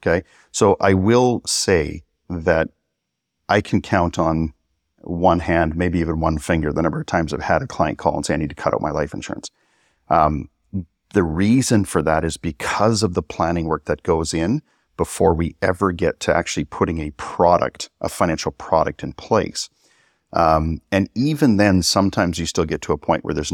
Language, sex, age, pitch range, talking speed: English, male, 40-59, 80-100 Hz, 195 wpm